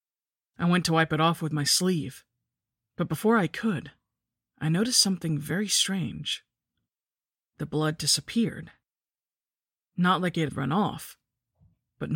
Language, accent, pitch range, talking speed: English, American, 140-175 Hz, 140 wpm